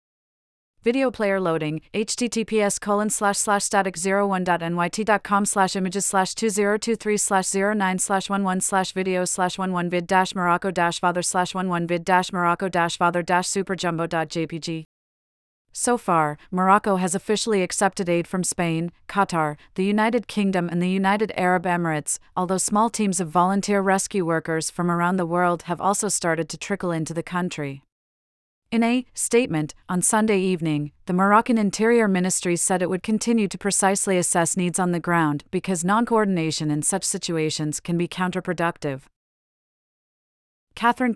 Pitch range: 170-200 Hz